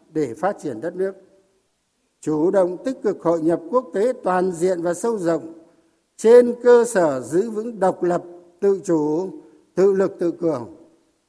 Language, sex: Vietnamese, male